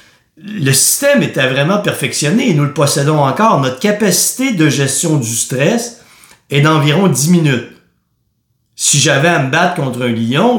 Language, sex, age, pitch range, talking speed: French, male, 50-69, 120-150 Hz, 160 wpm